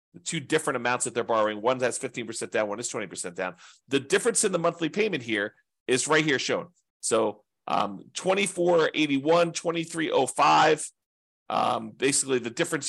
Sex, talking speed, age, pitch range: male, 160 wpm, 40-59, 125-175 Hz